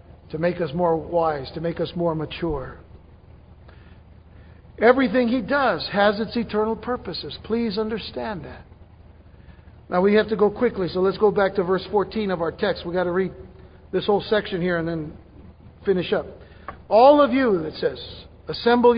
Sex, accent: male, American